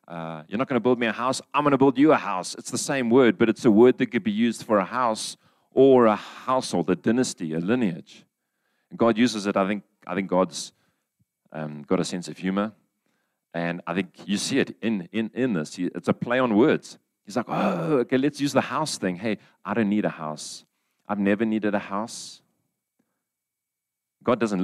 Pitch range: 90-120 Hz